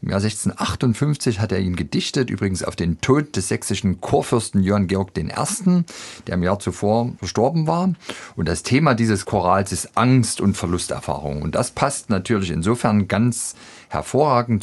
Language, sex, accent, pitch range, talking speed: German, male, German, 90-115 Hz, 160 wpm